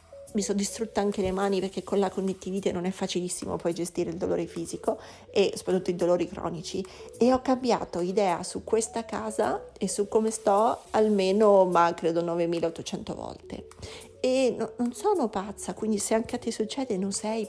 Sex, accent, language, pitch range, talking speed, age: female, native, Italian, 190-240 Hz, 175 wpm, 30-49